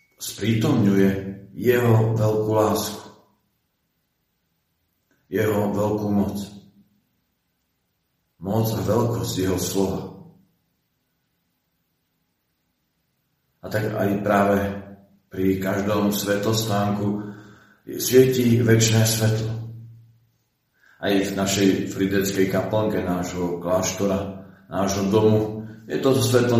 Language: Slovak